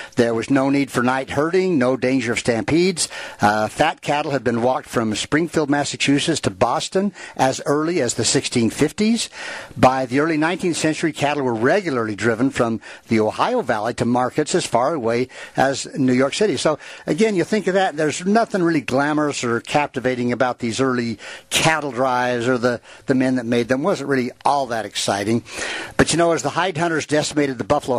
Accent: American